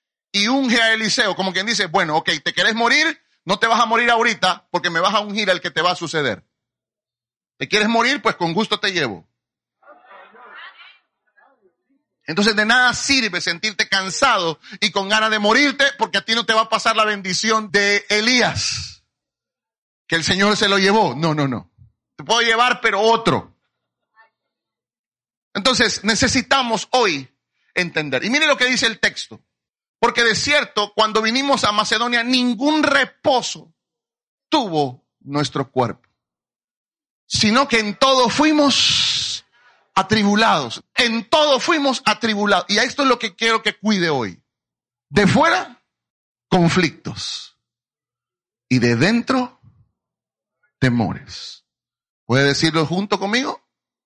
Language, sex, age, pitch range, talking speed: Spanish, male, 30-49, 180-240 Hz, 140 wpm